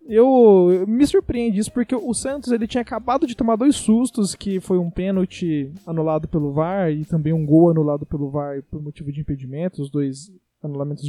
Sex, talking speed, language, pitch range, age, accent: male, 195 wpm, Portuguese, 160-235 Hz, 20-39, Brazilian